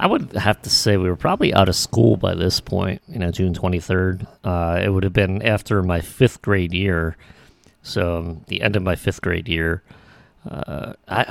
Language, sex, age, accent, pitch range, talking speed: English, male, 30-49, American, 90-105 Hz, 210 wpm